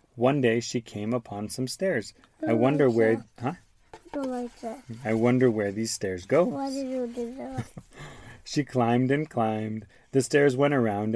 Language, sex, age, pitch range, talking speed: English, male, 30-49, 110-135 Hz, 135 wpm